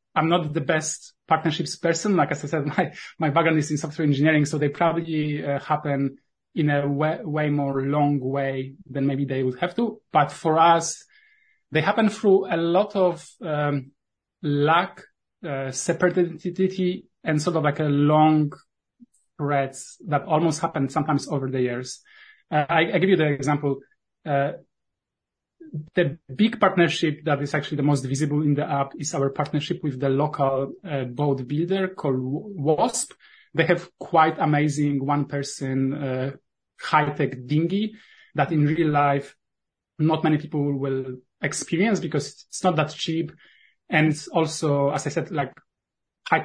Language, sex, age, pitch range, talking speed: English, male, 30-49, 145-170 Hz, 160 wpm